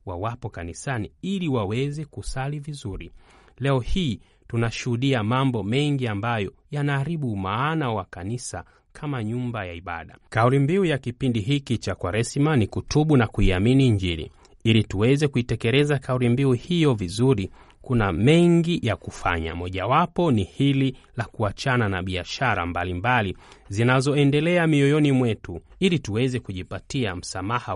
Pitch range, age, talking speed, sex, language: 95-140 Hz, 30-49, 130 wpm, male, Swahili